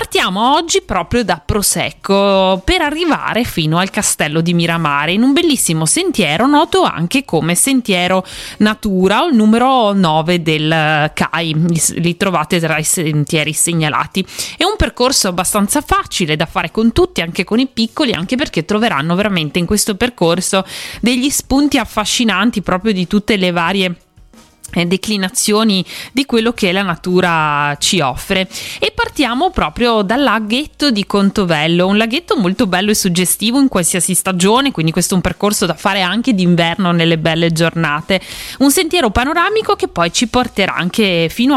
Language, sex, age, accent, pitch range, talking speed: Italian, female, 20-39, native, 170-235 Hz, 155 wpm